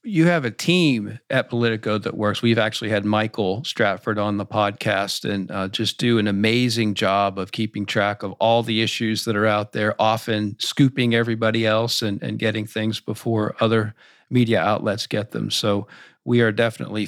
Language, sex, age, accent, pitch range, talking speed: English, male, 50-69, American, 105-125 Hz, 185 wpm